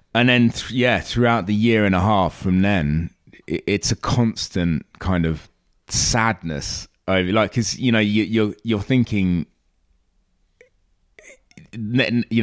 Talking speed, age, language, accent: 120 wpm, 30-49, English, British